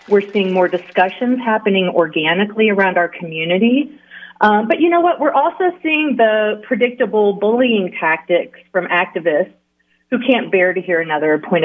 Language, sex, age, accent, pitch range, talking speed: English, female, 30-49, American, 170-230 Hz, 155 wpm